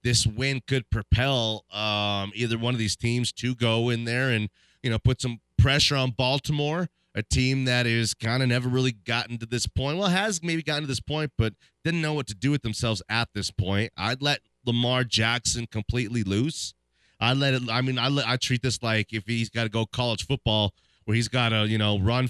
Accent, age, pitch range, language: American, 30-49, 105-125 Hz, English